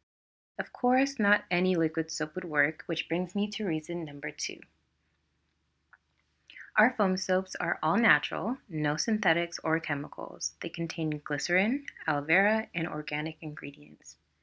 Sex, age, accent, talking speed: female, 20-39, American, 135 wpm